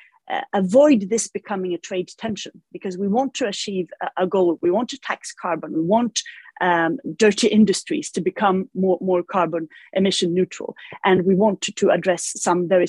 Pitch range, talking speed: 175-220 Hz, 185 wpm